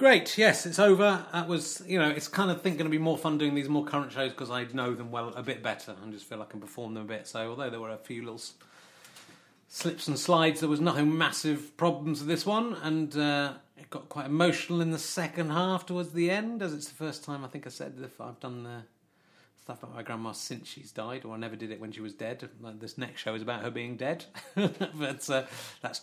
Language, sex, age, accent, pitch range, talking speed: English, male, 30-49, British, 115-155 Hz, 255 wpm